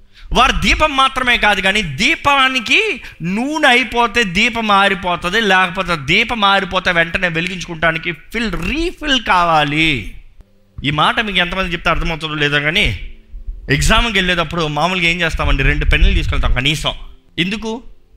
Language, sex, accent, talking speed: Telugu, male, native, 120 wpm